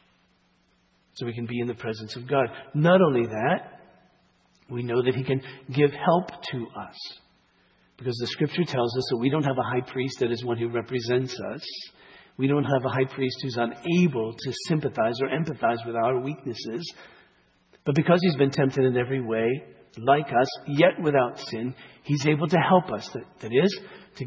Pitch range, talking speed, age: 120-160 Hz, 190 wpm, 50-69